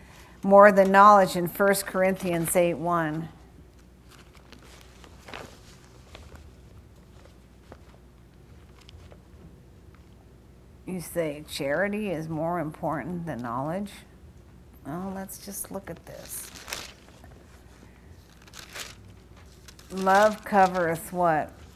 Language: English